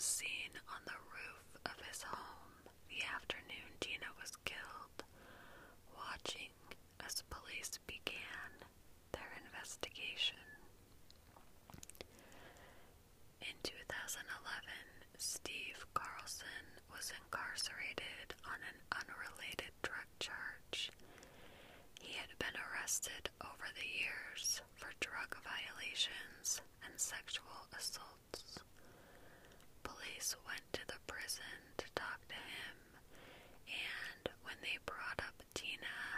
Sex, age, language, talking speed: female, 20-39, English, 95 wpm